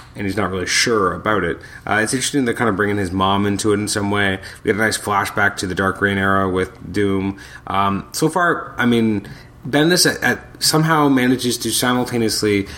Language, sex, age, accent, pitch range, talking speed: English, male, 30-49, American, 95-120 Hz, 215 wpm